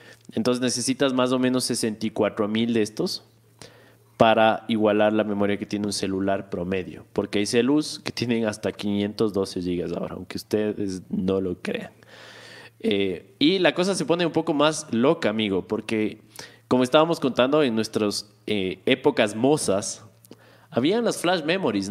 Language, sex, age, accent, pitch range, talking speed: Spanish, male, 20-39, Mexican, 105-150 Hz, 155 wpm